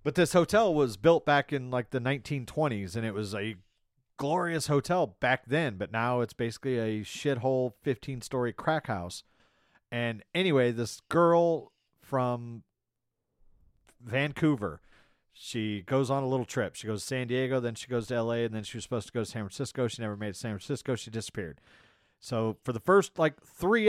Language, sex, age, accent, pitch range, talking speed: English, male, 40-59, American, 115-145 Hz, 185 wpm